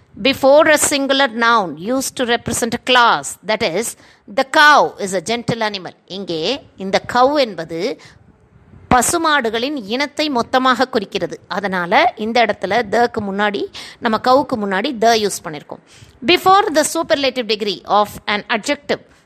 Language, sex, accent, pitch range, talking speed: Tamil, female, native, 210-280 Hz, 160 wpm